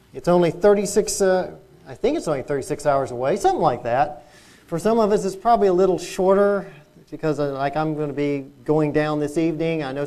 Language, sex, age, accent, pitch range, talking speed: English, male, 40-59, American, 145-185 Hz, 215 wpm